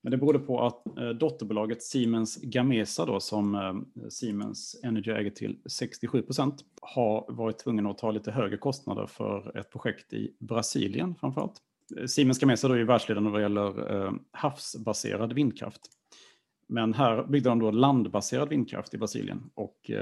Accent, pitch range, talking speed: Norwegian, 105-130 Hz, 150 wpm